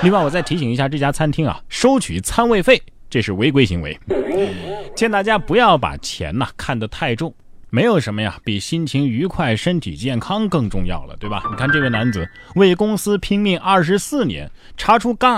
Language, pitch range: Chinese, 115-180 Hz